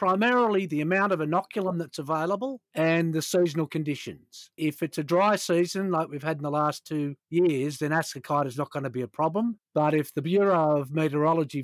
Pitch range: 145-175 Hz